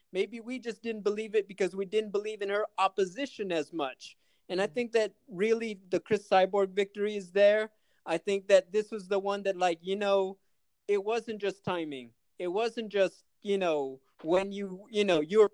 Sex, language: male, English